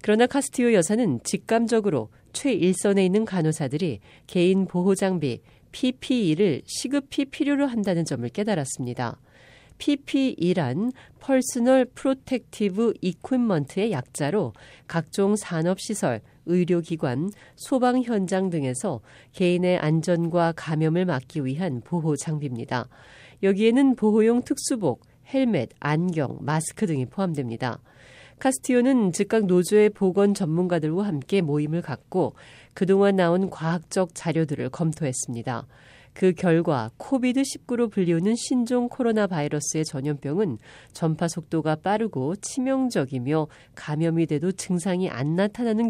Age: 40-59